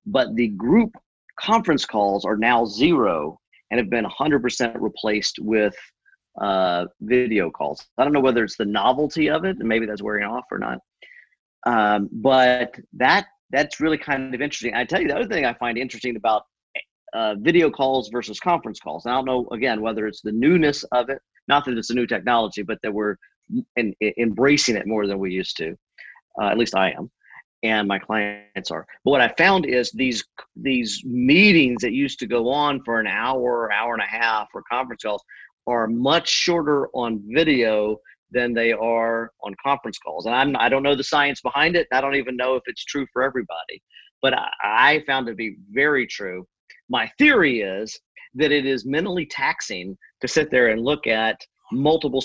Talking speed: 195 wpm